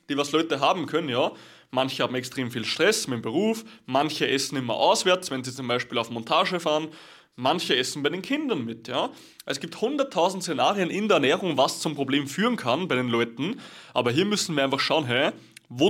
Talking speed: 210 wpm